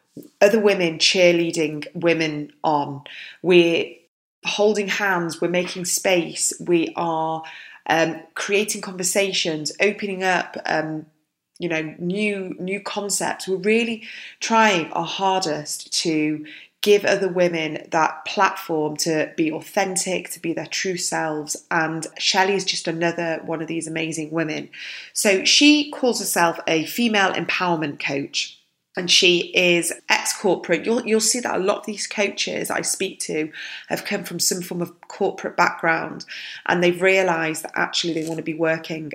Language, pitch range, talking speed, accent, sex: English, 160-200 Hz, 145 wpm, British, female